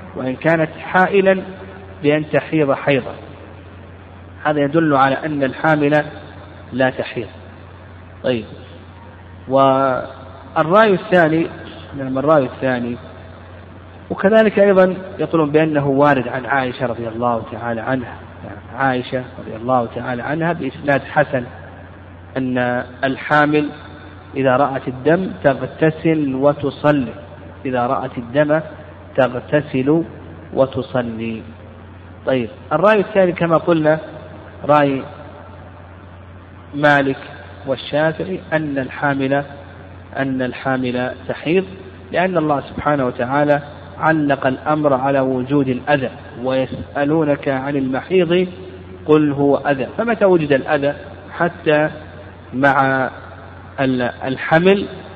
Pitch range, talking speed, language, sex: 100-150 Hz, 90 wpm, Arabic, male